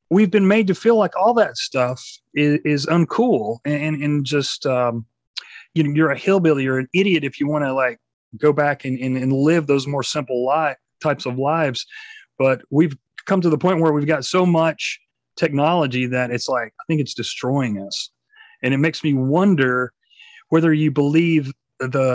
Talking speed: 190 wpm